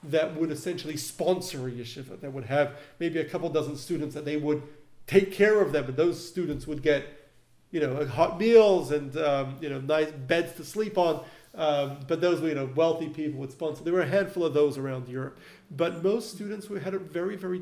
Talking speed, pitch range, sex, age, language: 220 wpm, 150-195 Hz, male, 40-59, English